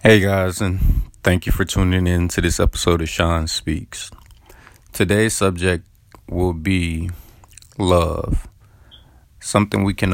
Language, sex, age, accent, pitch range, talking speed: English, male, 30-49, American, 85-100 Hz, 130 wpm